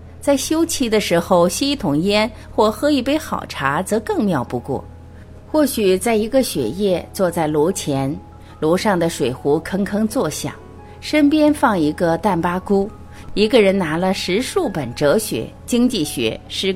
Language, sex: Chinese, female